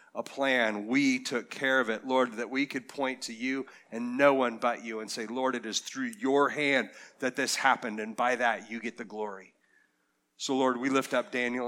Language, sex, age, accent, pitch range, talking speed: English, male, 40-59, American, 115-140 Hz, 220 wpm